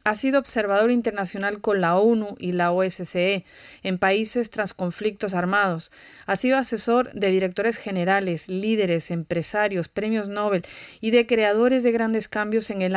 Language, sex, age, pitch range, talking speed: English, female, 30-49, 190-235 Hz, 155 wpm